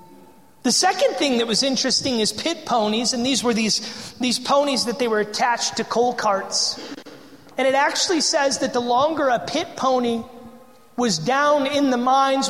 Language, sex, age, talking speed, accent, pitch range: English, male, 30-49, 180 wpm, American, 240-290 Hz